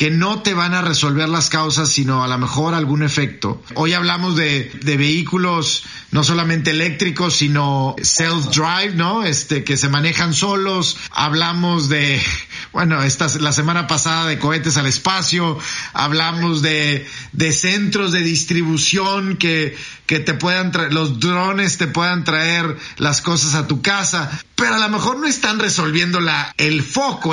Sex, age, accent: male, 40-59, Mexican